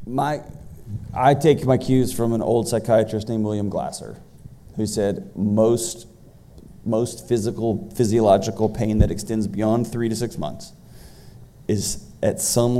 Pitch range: 100-115 Hz